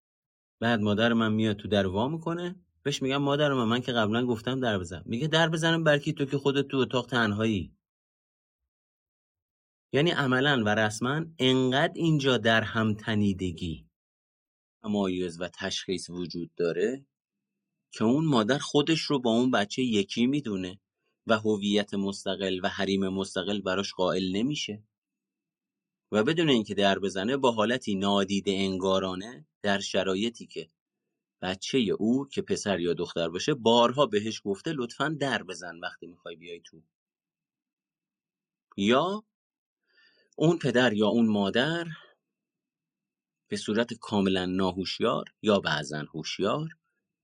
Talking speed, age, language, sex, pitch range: 130 wpm, 30-49, Persian, male, 95-140 Hz